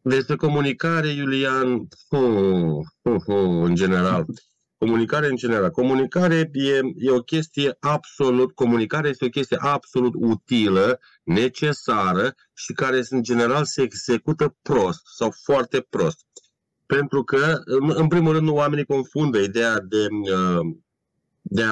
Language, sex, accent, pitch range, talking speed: Romanian, male, native, 115-140 Hz, 125 wpm